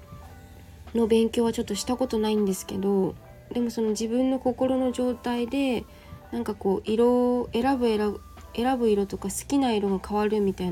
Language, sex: Japanese, female